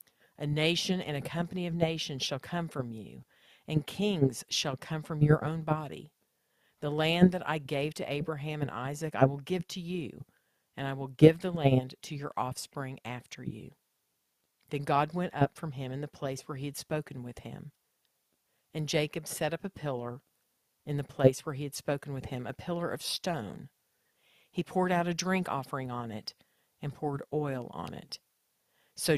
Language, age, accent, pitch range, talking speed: English, 50-69, American, 135-165 Hz, 190 wpm